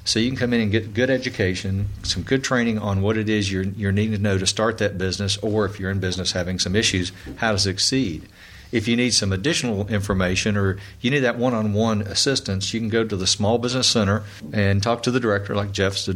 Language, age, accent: English, 40-59, American